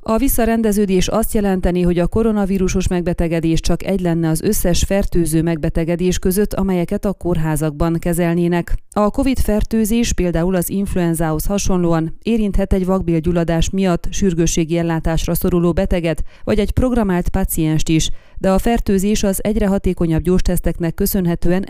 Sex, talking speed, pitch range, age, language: female, 130 wpm, 165-200 Hz, 30-49, Hungarian